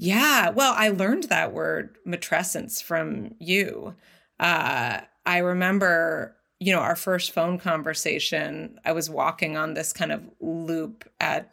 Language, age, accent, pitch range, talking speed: English, 30-49, American, 160-210 Hz, 140 wpm